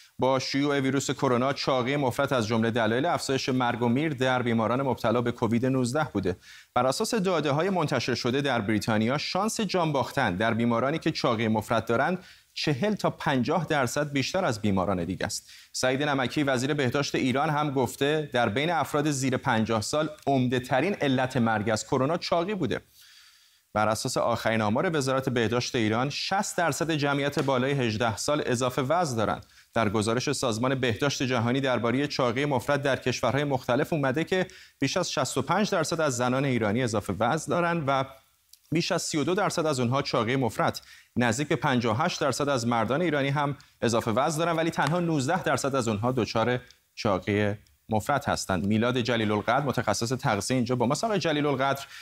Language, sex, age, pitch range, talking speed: Persian, male, 30-49, 120-150 Hz, 165 wpm